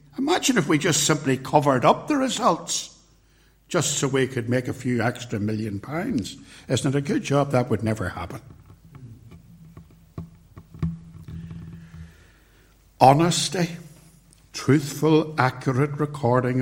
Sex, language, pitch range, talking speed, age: male, English, 115-150 Hz, 115 wpm, 60-79